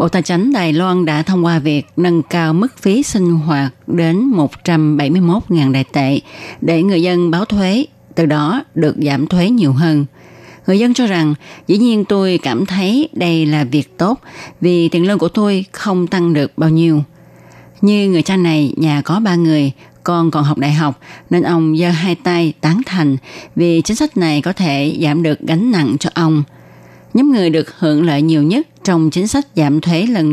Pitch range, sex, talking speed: 150-180 Hz, female, 195 wpm